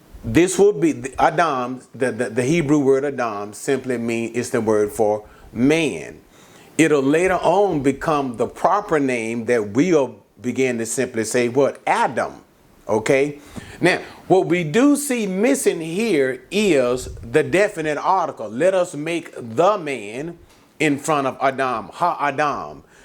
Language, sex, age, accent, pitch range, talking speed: English, male, 40-59, American, 140-195 Hz, 145 wpm